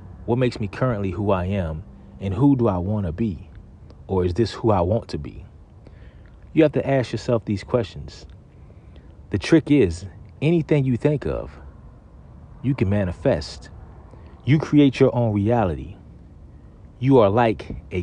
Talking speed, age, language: 160 wpm, 40-59, English